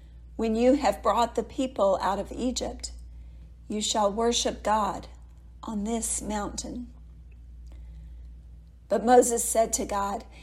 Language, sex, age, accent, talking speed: English, female, 50-69, American, 120 wpm